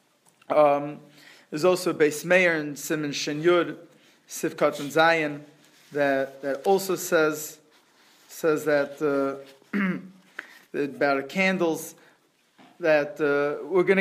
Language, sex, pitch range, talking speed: English, male, 145-170 Hz, 110 wpm